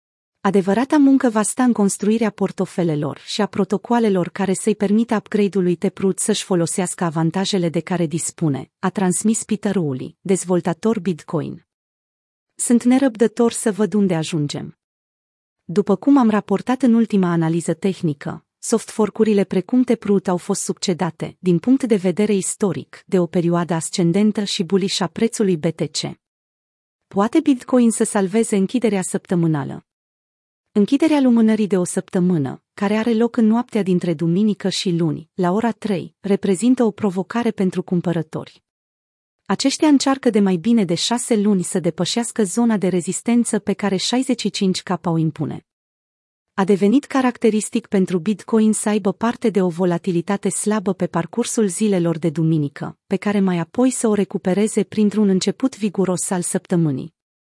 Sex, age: female, 30-49